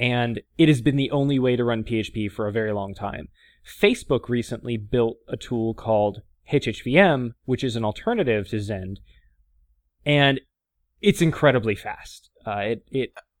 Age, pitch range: 20-39, 110-145 Hz